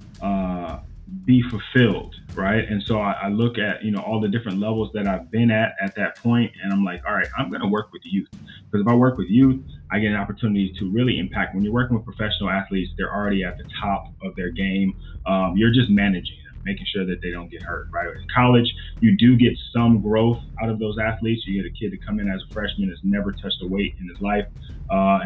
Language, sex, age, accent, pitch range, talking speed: English, male, 30-49, American, 90-110 Hz, 250 wpm